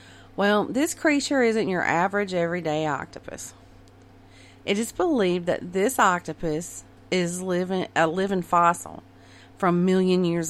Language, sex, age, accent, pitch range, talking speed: English, female, 40-59, American, 145-210 Hz, 130 wpm